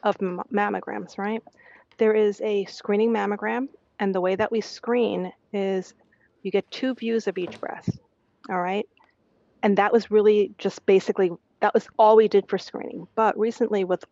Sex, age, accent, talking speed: female, 40-59, American, 170 wpm